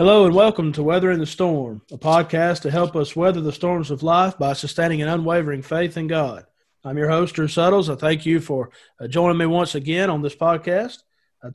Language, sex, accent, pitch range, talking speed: English, male, American, 150-180 Hz, 215 wpm